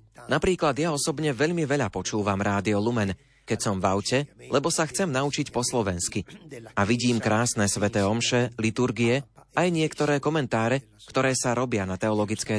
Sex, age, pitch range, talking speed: male, 30-49, 110-135 Hz, 155 wpm